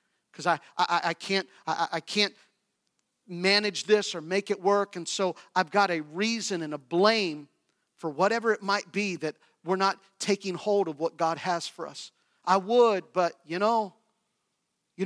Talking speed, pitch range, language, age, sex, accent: 180 wpm, 165-200 Hz, English, 40-59, male, American